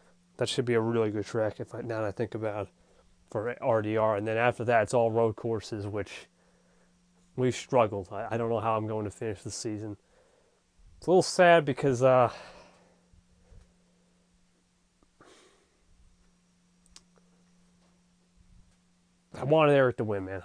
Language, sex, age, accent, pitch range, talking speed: English, male, 30-49, American, 105-135 Hz, 150 wpm